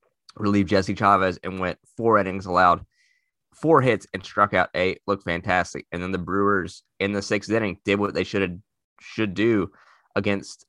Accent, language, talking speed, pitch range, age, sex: American, English, 175 wpm, 90-105 Hz, 20-39, male